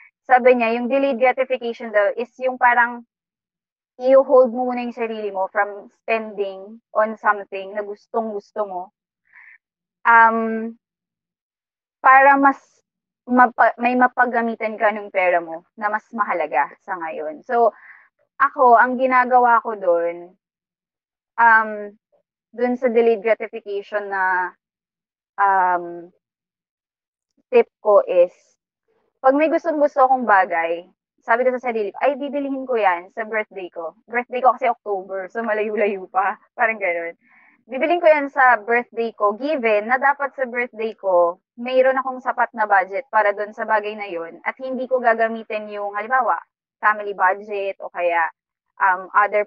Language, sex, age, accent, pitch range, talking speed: Filipino, female, 20-39, native, 195-250 Hz, 135 wpm